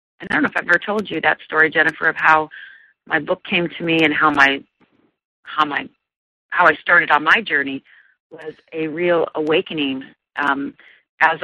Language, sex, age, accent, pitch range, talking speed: English, female, 40-59, American, 145-170 Hz, 190 wpm